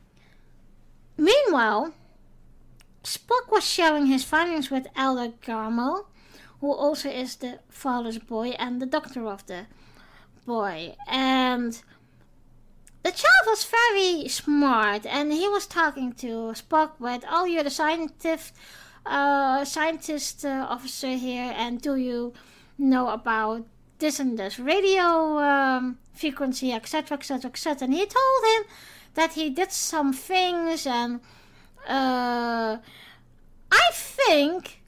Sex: female